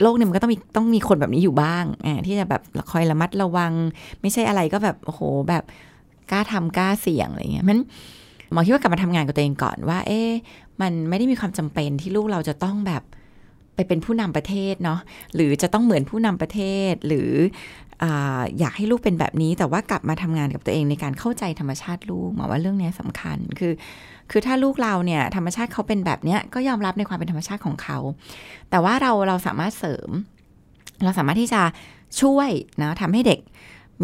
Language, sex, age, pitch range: Thai, female, 20-39, 155-210 Hz